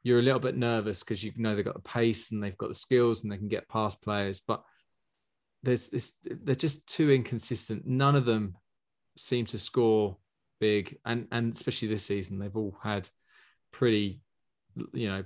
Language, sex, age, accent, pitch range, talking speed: English, male, 20-39, British, 105-130 Hz, 185 wpm